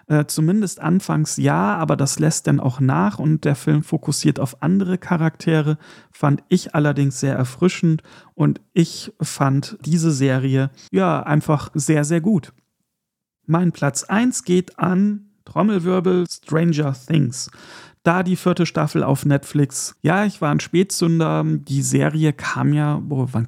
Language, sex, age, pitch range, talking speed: German, male, 40-59, 135-165 Hz, 145 wpm